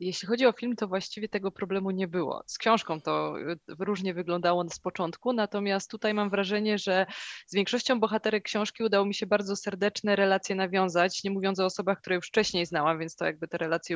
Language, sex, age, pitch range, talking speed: Polish, female, 20-39, 190-220 Hz, 200 wpm